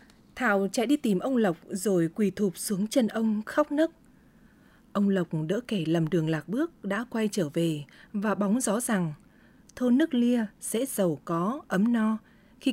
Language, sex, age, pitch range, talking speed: Vietnamese, female, 20-39, 190-245 Hz, 185 wpm